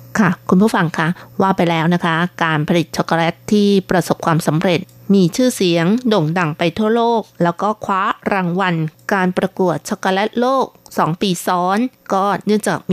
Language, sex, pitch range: Thai, female, 170-210 Hz